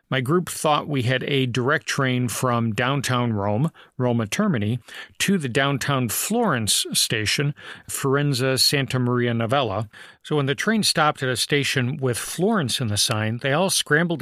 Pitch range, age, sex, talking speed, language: 120-160 Hz, 40-59, male, 160 wpm, English